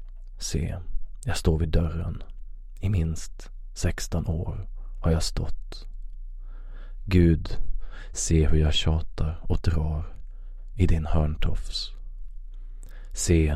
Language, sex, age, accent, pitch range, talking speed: Swedish, male, 30-49, native, 80-95 Hz, 100 wpm